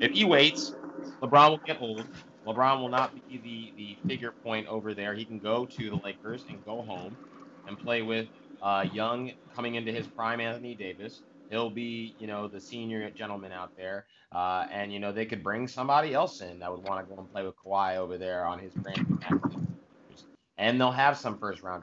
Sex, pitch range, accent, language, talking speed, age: male, 105-140 Hz, American, English, 210 wpm, 30-49